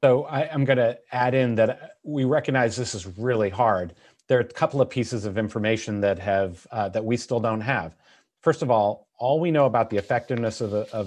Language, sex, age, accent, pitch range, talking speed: English, male, 40-59, American, 100-125 Hz, 230 wpm